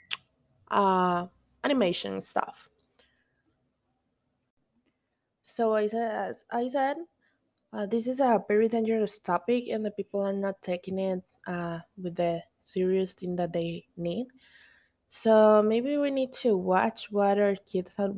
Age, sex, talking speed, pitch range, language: 20-39, female, 135 wpm, 180-220 Hz, English